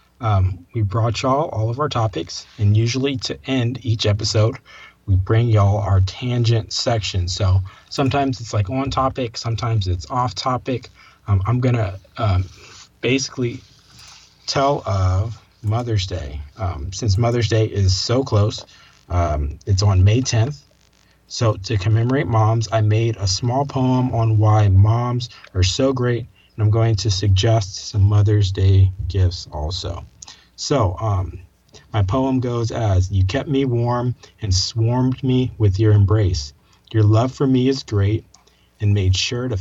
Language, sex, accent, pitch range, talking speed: English, male, American, 95-125 Hz, 155 wpm